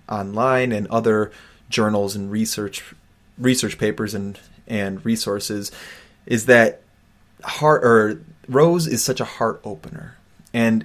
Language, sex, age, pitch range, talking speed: English, male, 20-39, 105-125 Hz, 120 wpm